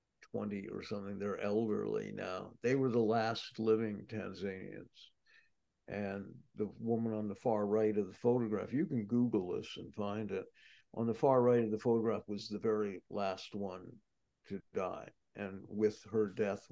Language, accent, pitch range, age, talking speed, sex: English, American, 105-125 Hz, 60-79, 170 wpm, male